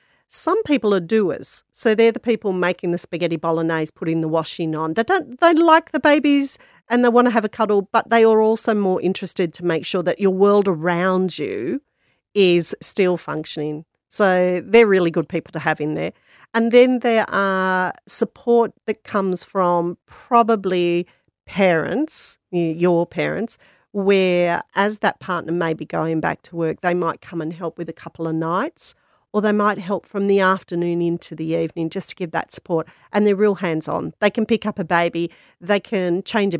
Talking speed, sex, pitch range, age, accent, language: 190 wpm, female, 170-210 Hz, 40-59, Australian, English